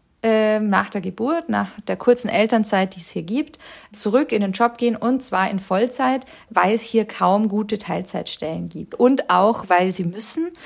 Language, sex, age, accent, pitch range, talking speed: German, female, 50-69, German, 195-235 Hz, 180 wpm